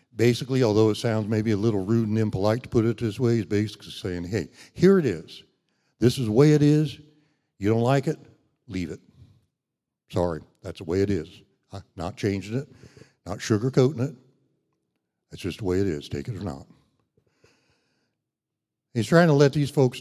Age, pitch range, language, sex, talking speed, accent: 60-79, 100-130 Hz, English, male, 185 wpm, American